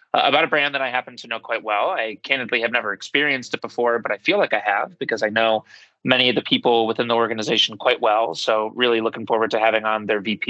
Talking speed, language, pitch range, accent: 255 wpm, English, 110-125 Hz, American